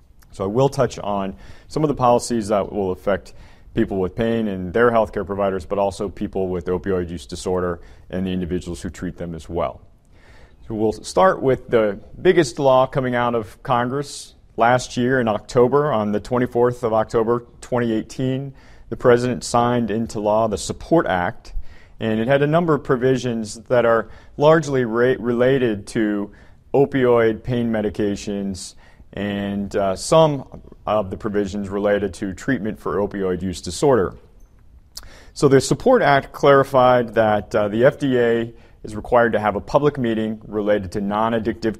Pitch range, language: 100-125 Hz, English